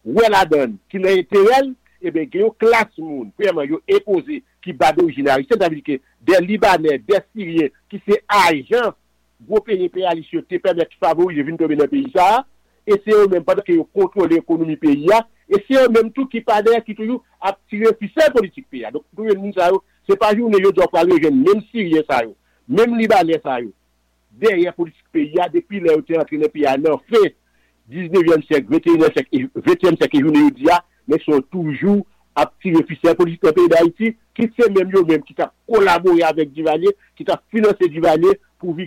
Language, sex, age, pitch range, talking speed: English, male, 50-69, 175-285 Hz, 180 wpm